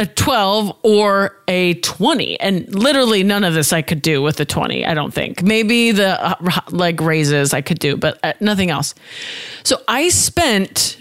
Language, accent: English, American